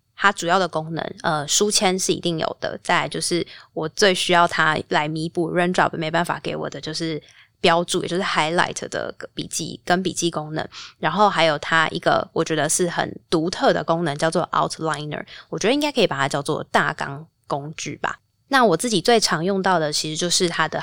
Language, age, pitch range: Chinese, 20-39, 160-185 Hz